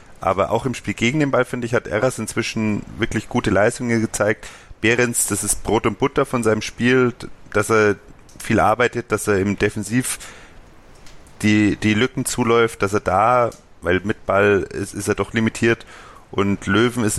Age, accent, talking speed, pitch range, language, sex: 30-49, German, 180 wpm, 105-120 Hz, German, male